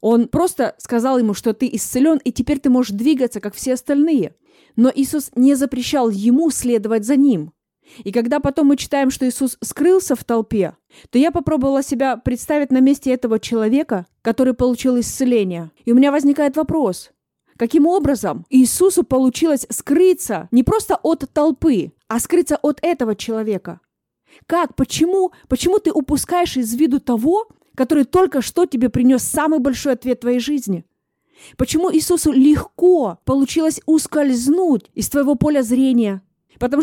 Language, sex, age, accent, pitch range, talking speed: Russian, female, 20-39, native, 235-295 Hz, 150 wpm